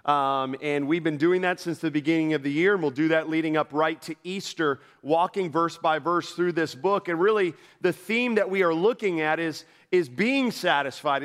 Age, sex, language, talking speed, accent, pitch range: 40-59, male, English, 220 wpm, American, 155-190 Hz